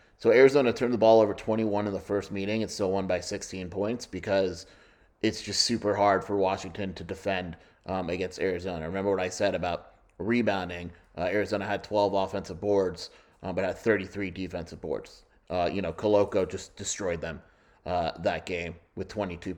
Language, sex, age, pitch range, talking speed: English, male, 30-49, 90-100 Hz, 180 wpm